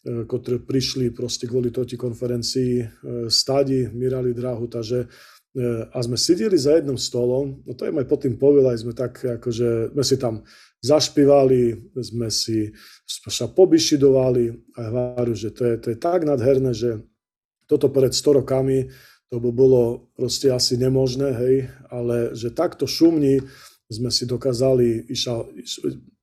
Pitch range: 120-135 Hz